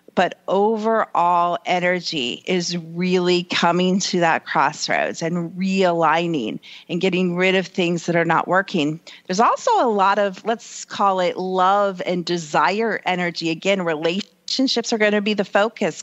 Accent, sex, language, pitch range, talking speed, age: American, female, English, 180-240 Hz, 150 wpm, 40-59